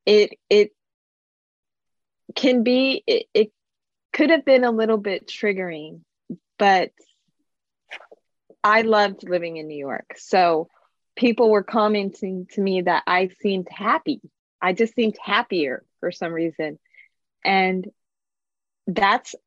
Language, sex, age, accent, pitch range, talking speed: English, female, 20-39, American, 175-225 Hz, 120 wpm